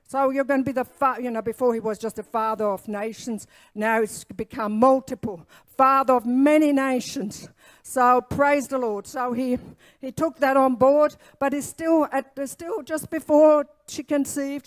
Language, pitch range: English, 225-270 Hz